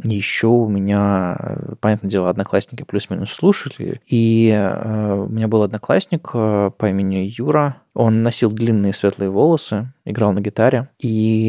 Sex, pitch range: male, 100-120 Hz